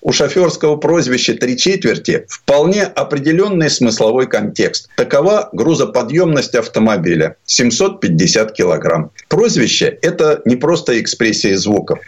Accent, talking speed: native, 100 wpm